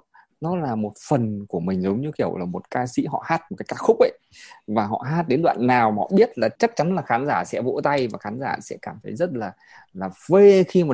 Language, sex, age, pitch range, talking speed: Vietnamese, male, 20-39, 115-170 Hz, 280 wpm